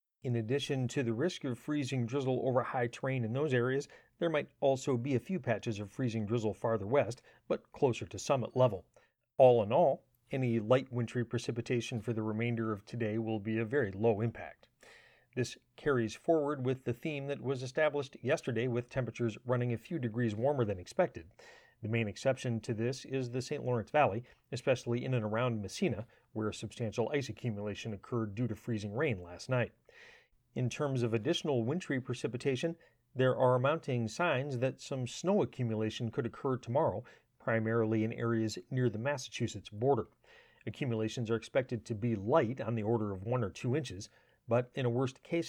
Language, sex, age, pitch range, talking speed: English, male, 40-59, 115-135 Hz, 180 wpm